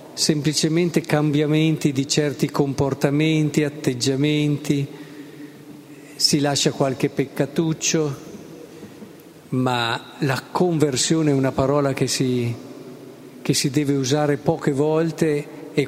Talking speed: 90 wpm